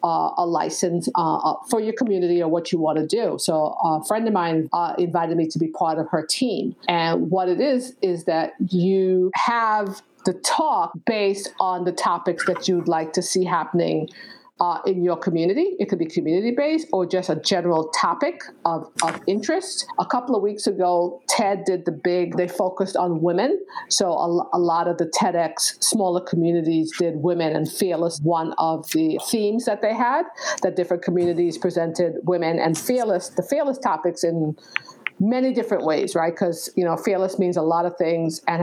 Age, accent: 50-69, American